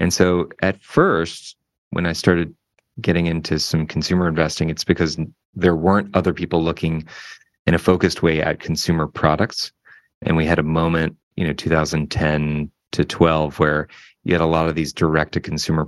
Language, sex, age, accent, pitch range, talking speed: English, male, 30-49, American, 80-90 Hz, 165 wpm